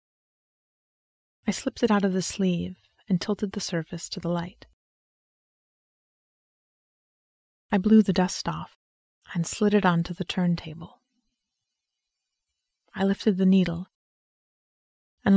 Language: English